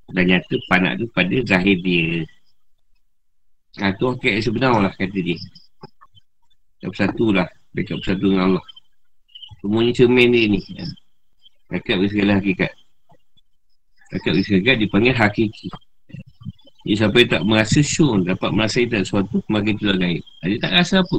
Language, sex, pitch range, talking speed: Malay, male, 95-135 Hz, 145 wpm